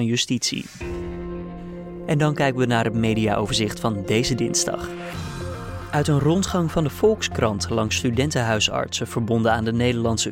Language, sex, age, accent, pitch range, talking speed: Dutch, male, 20-39, Dutch, 115-135 Hz, 135 wpm